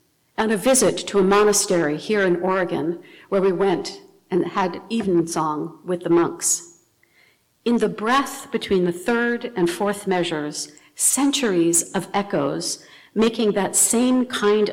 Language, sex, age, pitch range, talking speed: English, female, 60-79, 175-230 Hz, 145 wpm